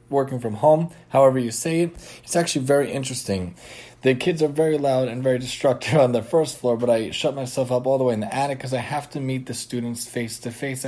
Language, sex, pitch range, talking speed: English, male, 115-135 Hz, 230 wpm